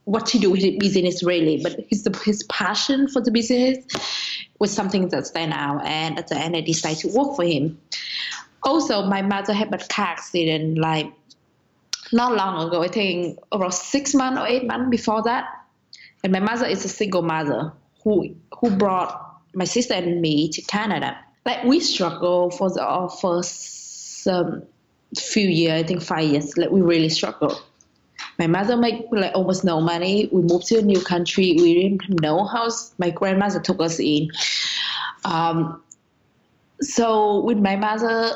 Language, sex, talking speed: English, female, 170 wpm